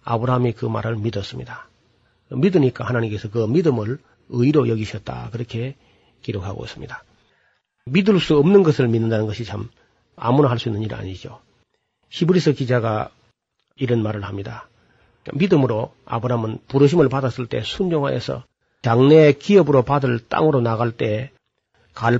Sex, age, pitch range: male, 40-59, 115-145 Hz